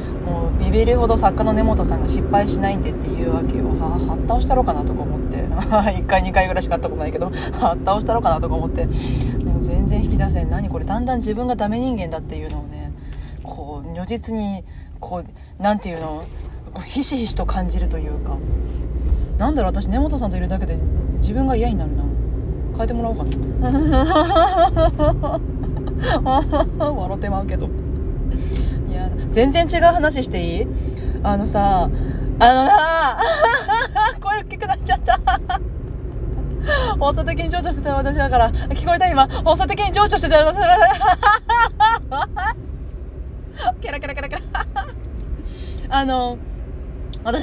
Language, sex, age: Japanese, female, 20-39